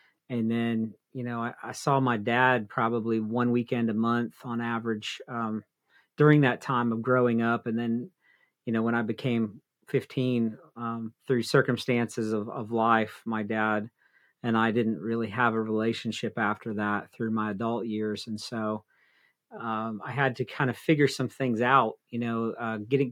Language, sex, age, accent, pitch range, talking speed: English, male, 40-59, American, 115-130 Hz, 175 wpm